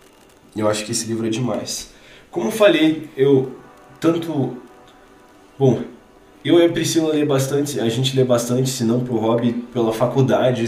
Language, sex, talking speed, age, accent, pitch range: Portuguese, male, 165 wpm, 20-39, Brazilian, 115-135 Hz